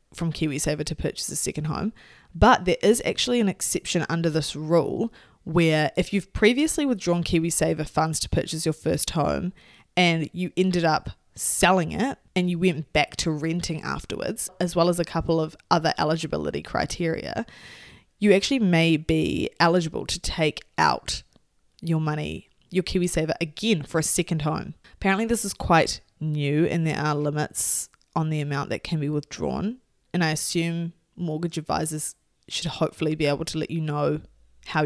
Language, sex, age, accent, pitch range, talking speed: English, female, 20-39, Australian, 155-180 Hz, 165 wpm